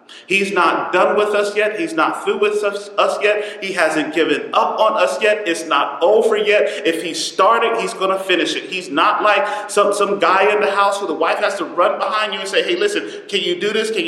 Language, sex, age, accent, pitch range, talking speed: English, male, 40-59, American, 180-230 Hz, 245 wpm